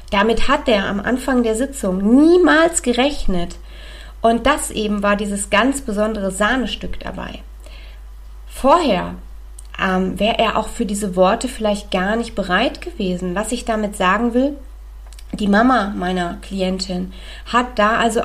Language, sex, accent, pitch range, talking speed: German, female, German, 190-255 Hz, 140 wpm